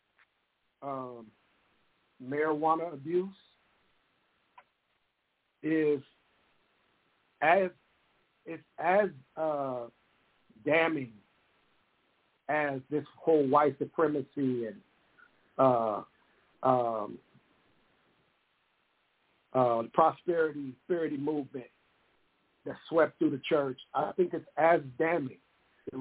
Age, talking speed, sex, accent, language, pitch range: 60-79, 75 wpm, male, American, English, 145-185 Hz